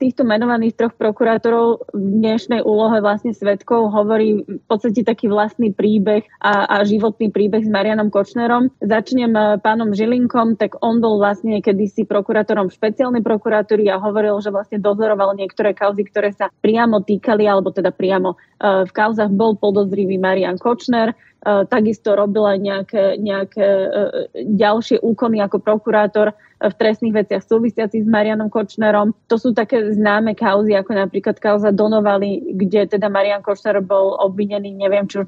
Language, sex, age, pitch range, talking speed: Slovak, female, 20-39, 200-225 Hz, 150 wpm